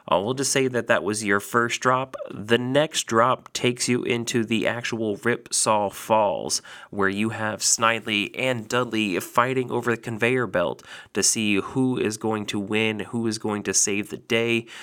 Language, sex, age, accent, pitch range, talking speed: English, male, 30-49, American, 105-125 Hz, 180 wpm